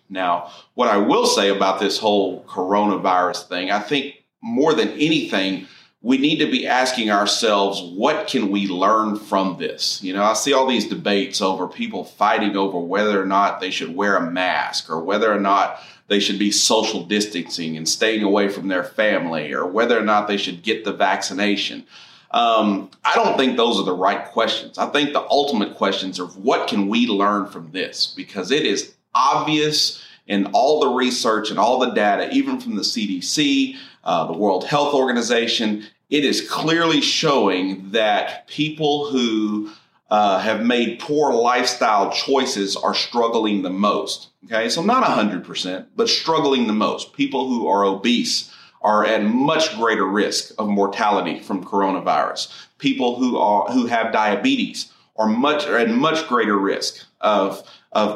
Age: 30-49